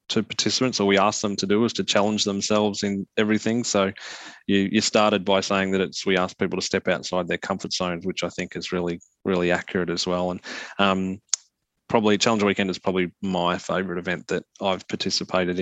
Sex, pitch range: male, 95-105 Hz